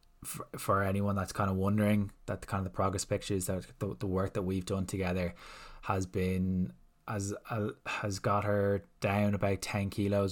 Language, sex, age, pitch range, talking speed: English, male, 20-39, 90-100 Hz, 165 wpm